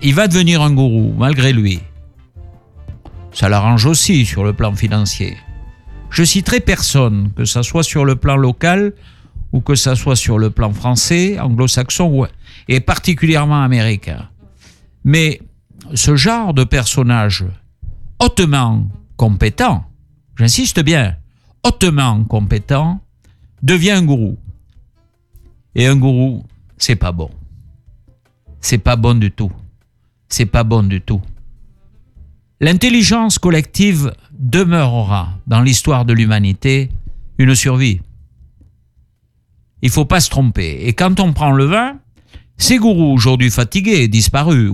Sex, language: male, French